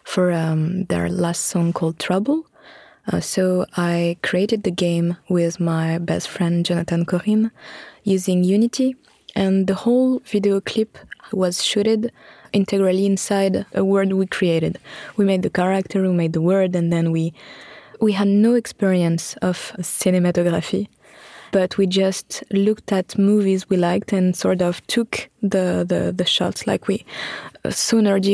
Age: 20-39